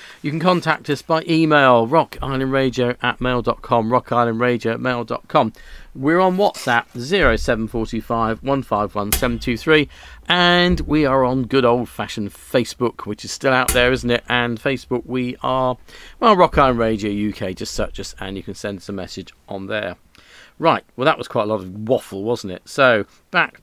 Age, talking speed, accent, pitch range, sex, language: 40-59, 165 wpm, British, 115-140 Hz, male, English